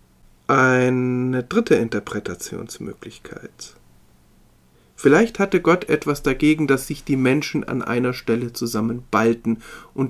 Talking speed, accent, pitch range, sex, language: 100 wpm, German, 120-165 Hz, male, German